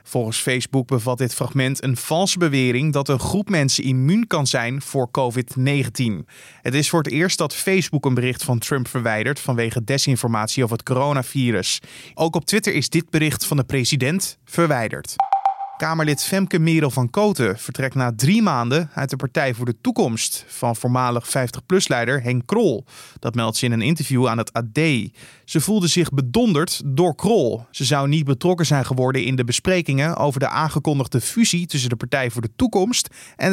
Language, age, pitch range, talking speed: Dutch, 20-39, 125-160 Hz, 175 wpm